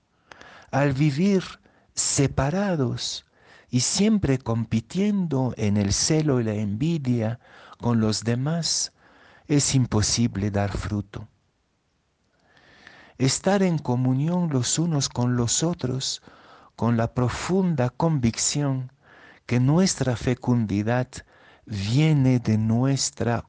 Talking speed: 95 wpm